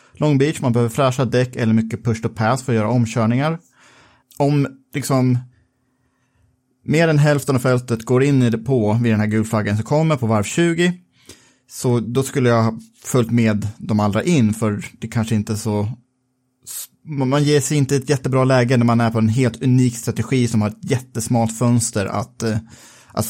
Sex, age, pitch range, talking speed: male, 30-49, 115-135 Hz, 185 wpm